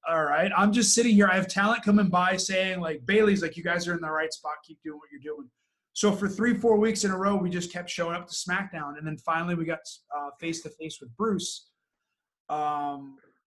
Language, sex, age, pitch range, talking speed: English, male, 30-49, 155-185 Hz, 235 wpm